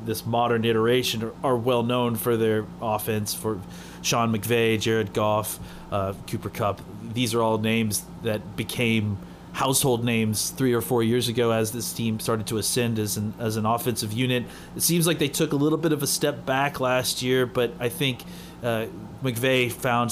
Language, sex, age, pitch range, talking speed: English, male, 30-49, 110-135 Hz, 185 wpm